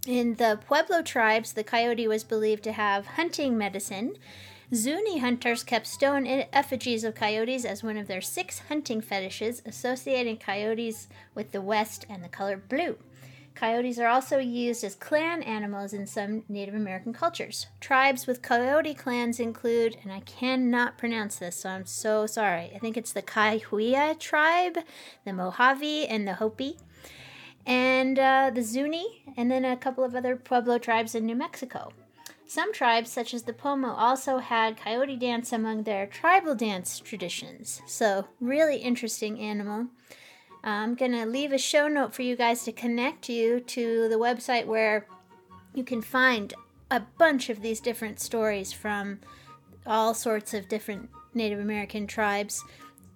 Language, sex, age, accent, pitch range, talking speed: English, female, 30-49, American, 215-255 Hz, 155 wpm